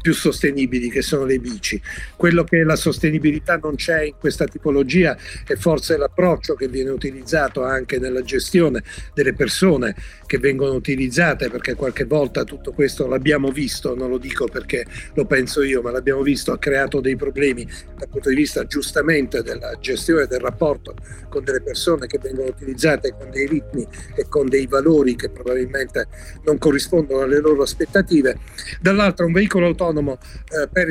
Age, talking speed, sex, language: 50-69, 165 wpm, male, Italian